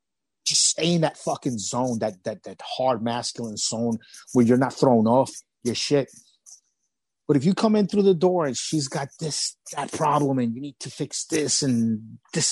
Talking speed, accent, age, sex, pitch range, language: 185 wpm, American, 30-49, male, 125-160 Hz, English